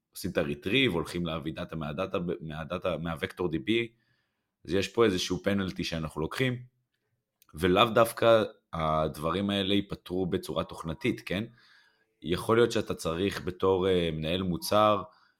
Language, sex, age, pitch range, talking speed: Hebrew, male, 20-39, 80-100 Hz, 120 wpm